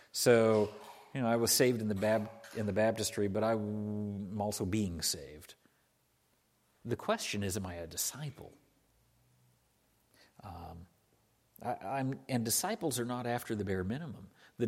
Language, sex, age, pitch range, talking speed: English, male, 50-69, 100-125 Hz, 150 wpm